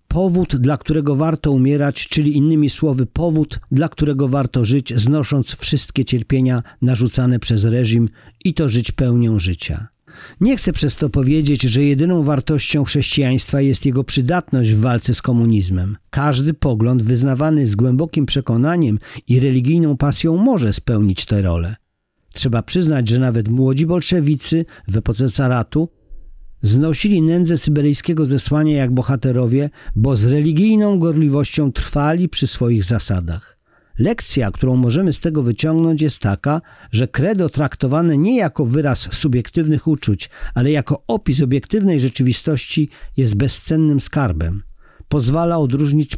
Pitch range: 125-155 Hz